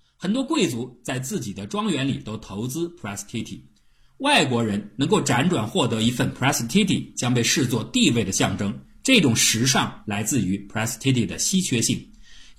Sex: male